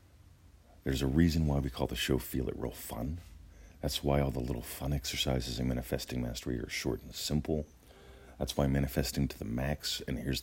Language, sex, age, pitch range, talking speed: English, male, 40-59, 65-80 Hz, 200 wpm